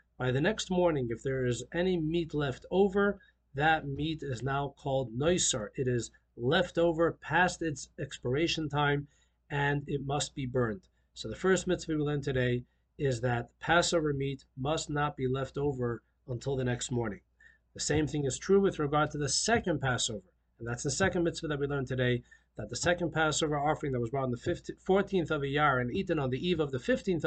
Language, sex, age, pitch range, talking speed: English, male, 40-59, 135-175 Hz, 205 wpm